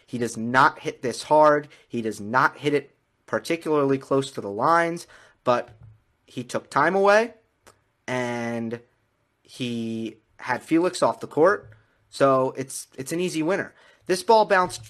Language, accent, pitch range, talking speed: English, American, 115-155 Hz, 150 wpm